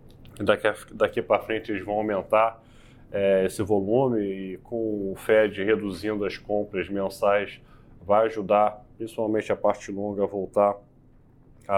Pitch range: 100-125 Hz